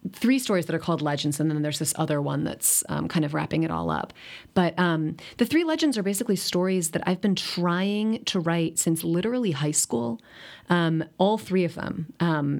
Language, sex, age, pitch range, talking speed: English, female, 30-49, 150-180 Hz, 210 wpm